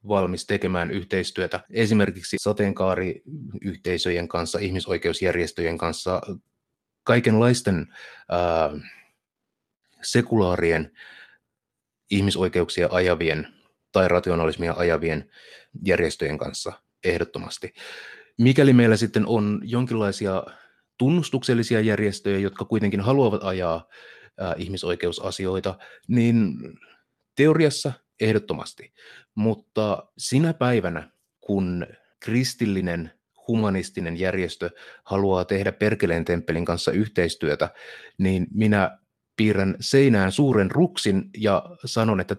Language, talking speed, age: Finnish, 80 wpm, 30-49